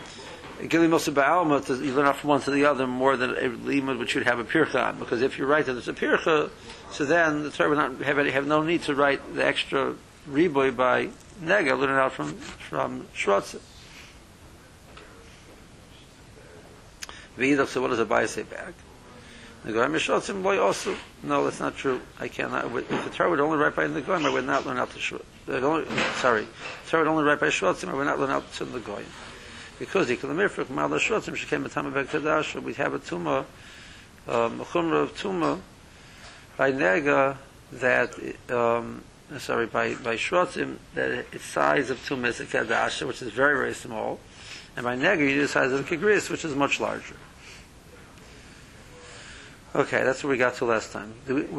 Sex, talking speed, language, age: male, 180 wpm, English, 60-79